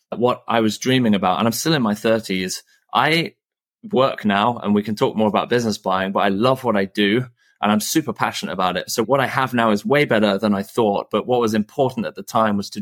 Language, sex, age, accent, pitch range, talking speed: English, male, 20-39, British, 100-120 Hz, 255 wpm